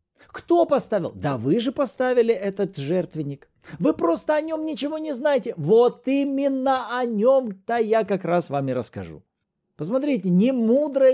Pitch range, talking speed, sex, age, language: 145-235 Hz, 150 wpm, male, 40-59, Russian